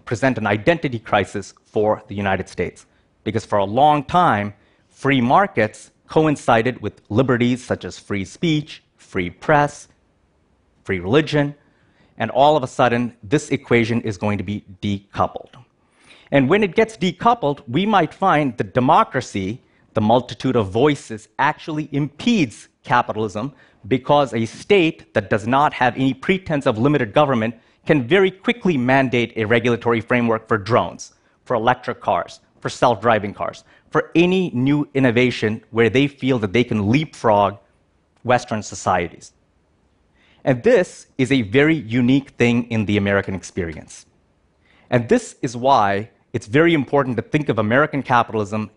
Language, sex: Chinese, male